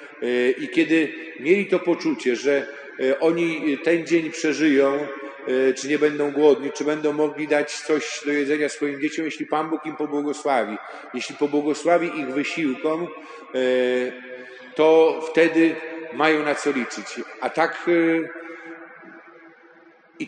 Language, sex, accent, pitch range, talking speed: Polish, male, native, 130-160 Hz, 120 wpm